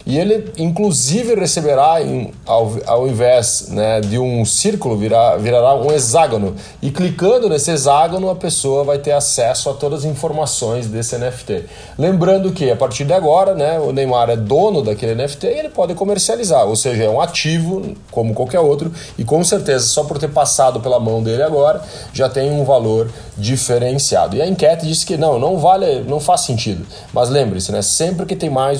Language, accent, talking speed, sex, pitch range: Portuguese, Brazilian, 180 wpm, male, 120-165 Hz